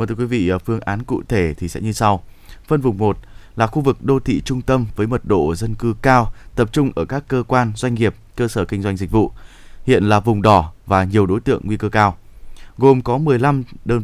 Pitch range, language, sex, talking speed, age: 105-130 Hz, Vietnamese, male, 245 wpm, 20-39